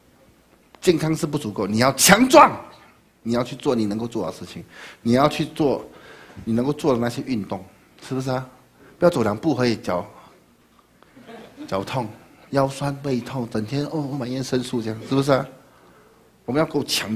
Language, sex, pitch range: Chinese, male, 110-180 Hz